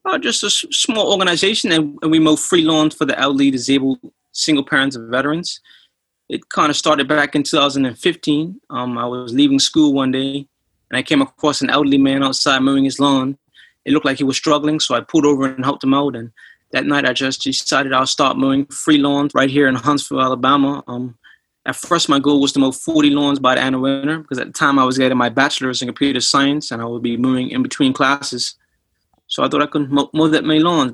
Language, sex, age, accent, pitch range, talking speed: English, male, 20-39, American, 130-150 Hz, 230 wpm